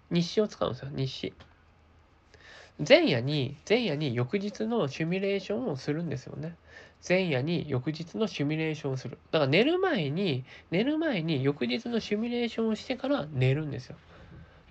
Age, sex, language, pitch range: 20-39, male, Japanese, 135-215 Hz